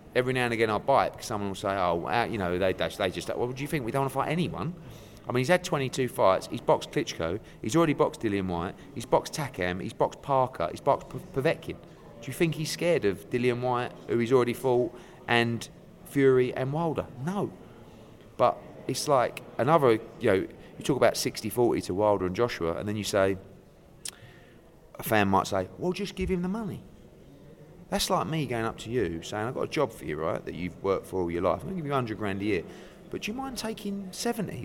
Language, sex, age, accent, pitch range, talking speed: English, male, 30-49, British, 105-160 Hz, 230 wpm